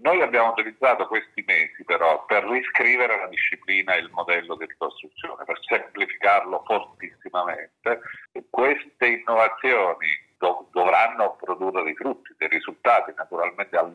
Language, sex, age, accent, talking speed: Italian, male, 50-69, native, 125 wpm